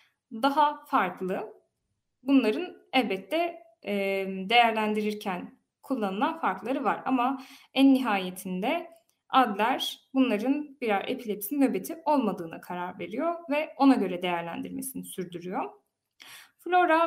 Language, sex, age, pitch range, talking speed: Turkish, female, 10-29, 195-270 Hz, 90 wpm